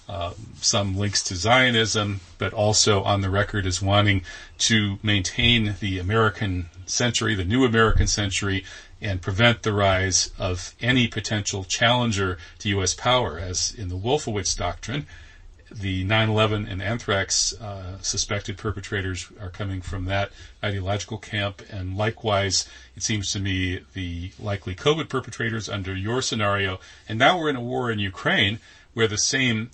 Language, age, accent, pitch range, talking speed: English, 40-59, American, 95-110 Hz, 150 wpm